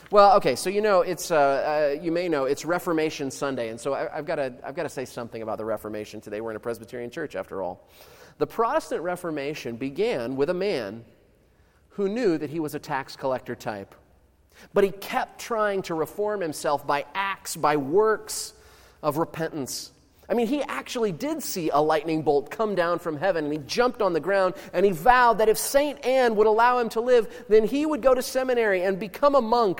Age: 30-49